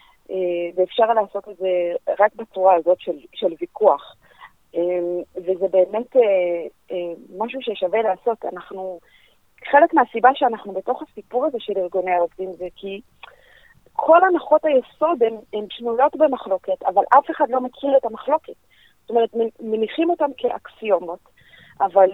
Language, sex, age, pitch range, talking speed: Hebrew, female, 30-49, 195-270 Hz, 125 wpm